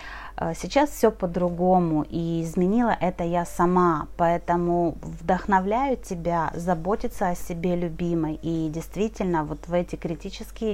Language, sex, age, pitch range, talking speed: Russian, female, 30-49, 170-200 Hz, 115 wpm